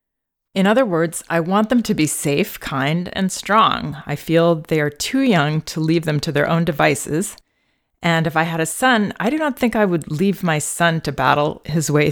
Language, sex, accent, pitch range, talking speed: English, female, American, 145-170 Hz, 220 wpm